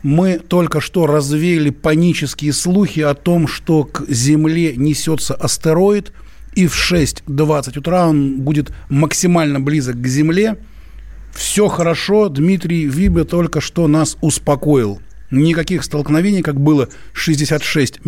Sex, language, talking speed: male, Russian, 120 wpm